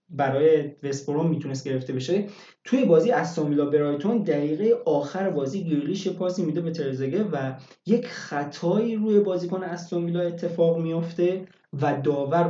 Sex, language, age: male, Persian, 20-39